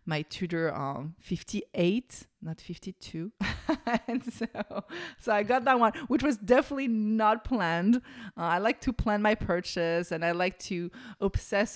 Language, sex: English, female